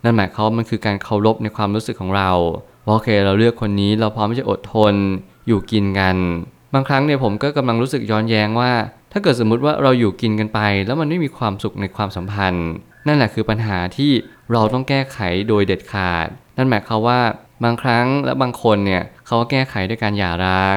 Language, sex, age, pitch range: Thai, male, 20-39, 100-120 Hz